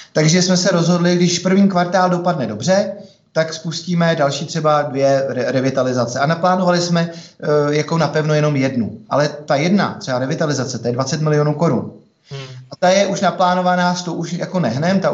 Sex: male